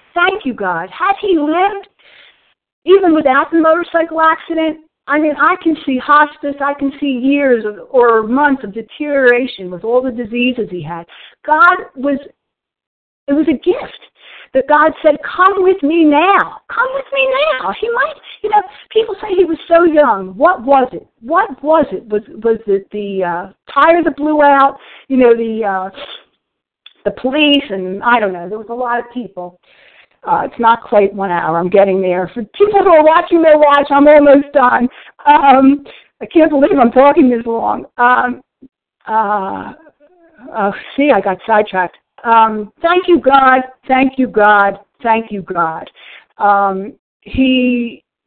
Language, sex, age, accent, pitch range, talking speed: English, female, 50-69, American, 220-310 Hz, 170 wpm